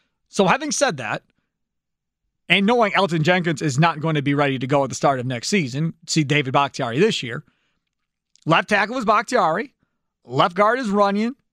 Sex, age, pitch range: male, 40-59, 170-240 Hz